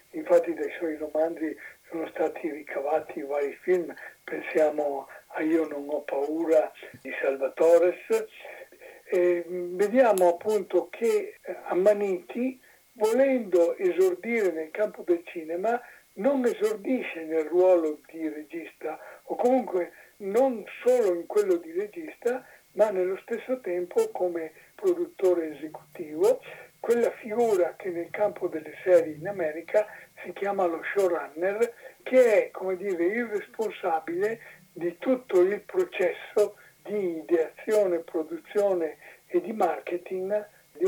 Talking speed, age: 115 wpm, 60-79